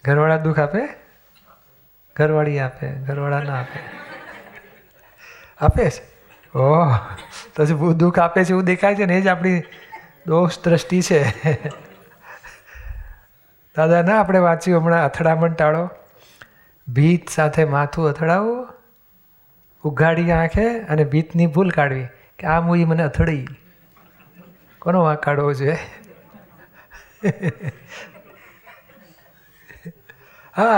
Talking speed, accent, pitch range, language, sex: 70 wpm, native, 155-180 Hz, Gujarati, male